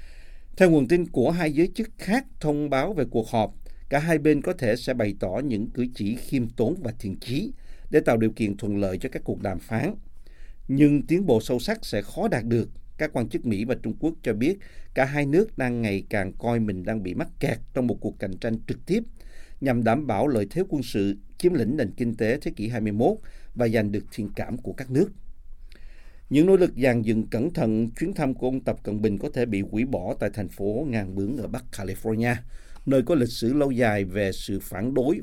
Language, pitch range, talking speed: Vietnamese, 105-135 Hz, 235 wpm